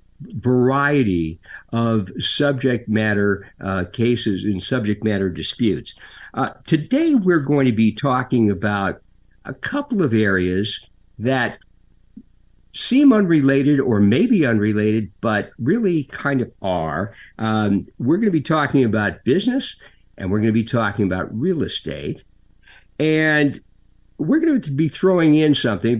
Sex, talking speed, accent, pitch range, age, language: male, 135 wpm, American, 100-140 Hz, 50-69, English